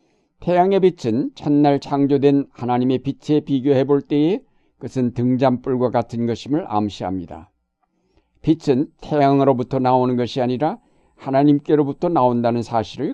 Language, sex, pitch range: Korean, male, 120-150 Hz